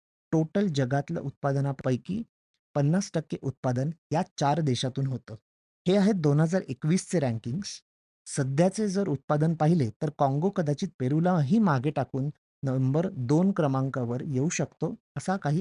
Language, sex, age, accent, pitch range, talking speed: Marathi, male, 30-49, native, 130-175 Hz, 115 wpm